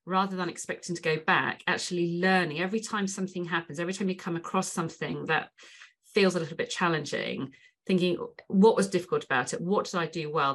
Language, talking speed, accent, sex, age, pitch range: English, 200 wpm, British, female, 40-59, 155-195 Hz